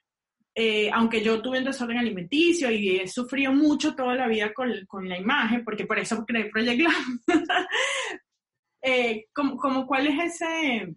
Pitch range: 225-305 Hz